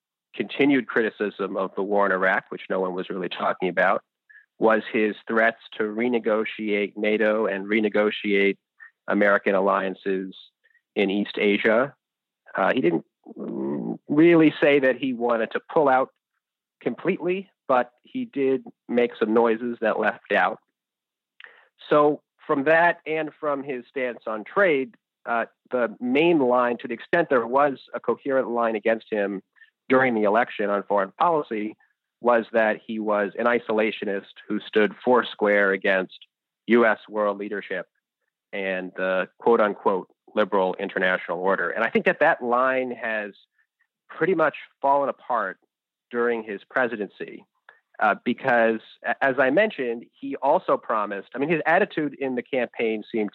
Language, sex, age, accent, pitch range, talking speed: English, male, 40-59, American, 100-130 Hz, 140 wpm